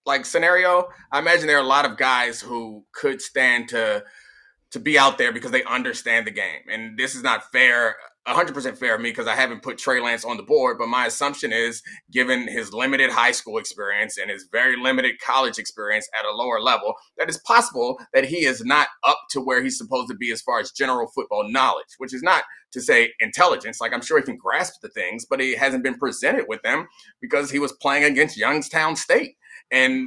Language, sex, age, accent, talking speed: English, male, 30-49, American, 220 wpm